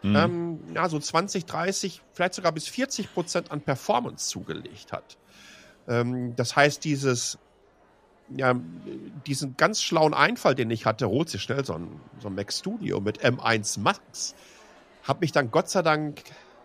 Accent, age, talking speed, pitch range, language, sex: German, 50-69, 155 wpm, 120-155 Hz, German, male